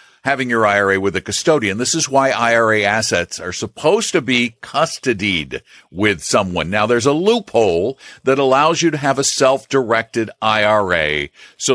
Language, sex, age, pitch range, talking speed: English, male, 50-69, 110-175 Hz, 160 wpm